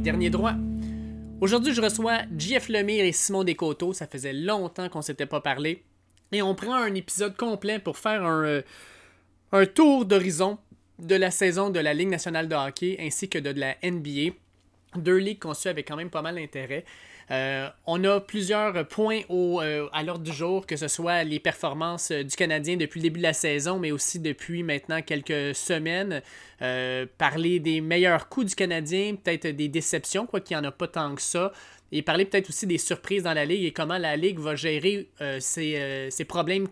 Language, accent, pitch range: French, Canadian, 150-190 Hz